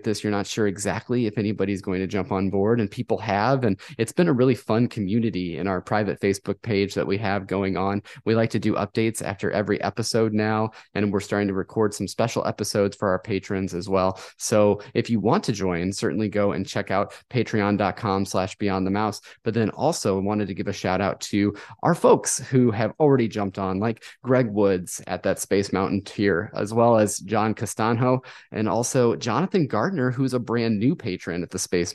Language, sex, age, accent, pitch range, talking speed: English, male, 20-39, American, 100-115 Hz, 210 wpm